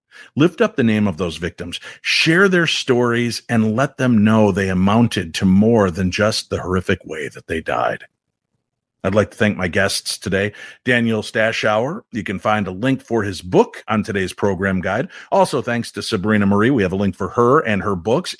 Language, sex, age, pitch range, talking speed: English, male, 50-69, 100-140 Hz, 200 wpm